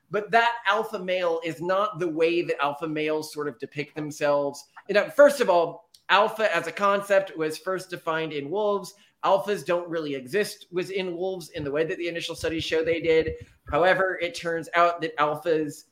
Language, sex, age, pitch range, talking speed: English, male, 30-49, 145-185 Hz, 190 wpm